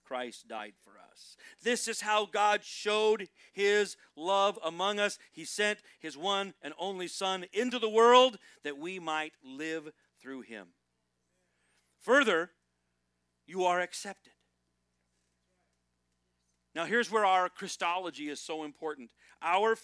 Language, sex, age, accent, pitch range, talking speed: English, male, 40-59, American, 130-200 Hz, 125 wpm